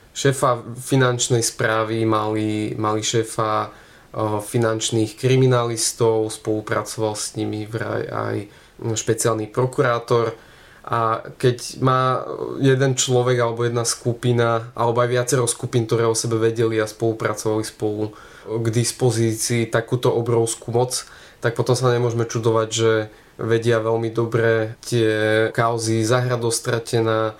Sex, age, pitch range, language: male, 20-39, 110-120 Hz, Slovak